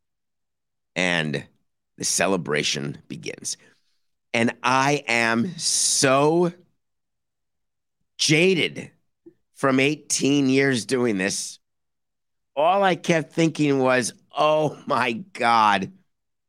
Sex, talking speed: male, 80 wpm